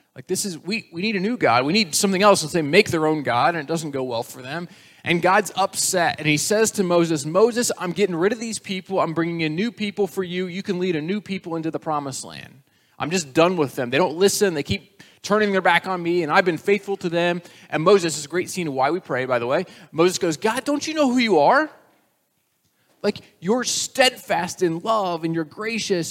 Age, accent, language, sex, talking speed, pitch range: 20-39, American, English, male, 255 wpm, 135-190 Hz